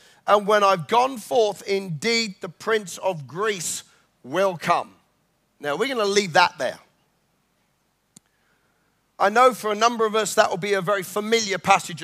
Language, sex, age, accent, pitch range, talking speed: English, male, 40-59, British, 185-225 Hz, 165 wpm